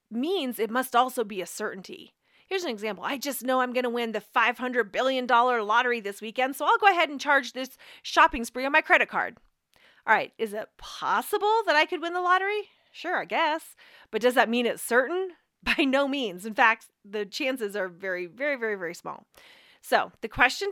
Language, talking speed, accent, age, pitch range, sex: English, 210 wpm, American, 30-49, 220-310 Hz, female